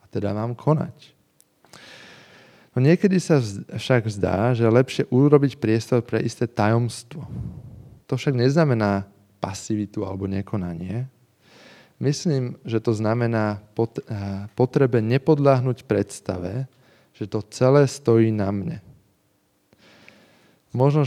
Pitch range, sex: 105-130 Hz, male